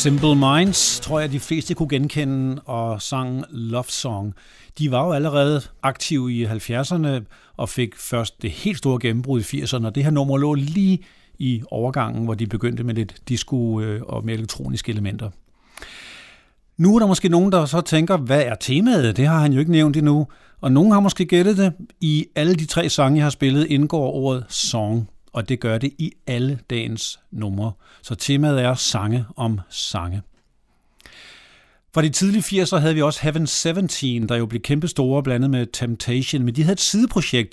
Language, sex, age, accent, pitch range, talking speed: Danish, male, 50-69, native, 120-155 Hz, 185 wpm